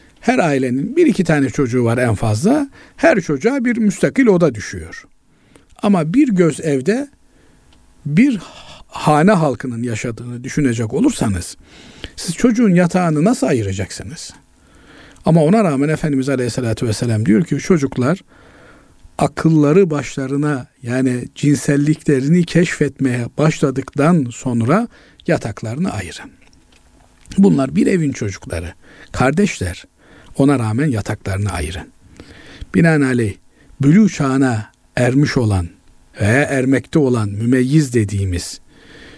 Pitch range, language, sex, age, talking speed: 125-170 Hz, Turkish, male, 50-69, 105 wpm